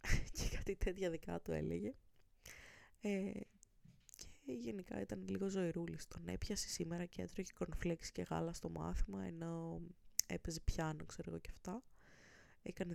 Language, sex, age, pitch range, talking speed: Greek, female, 20-39, 140-190 Hz, 135 wpm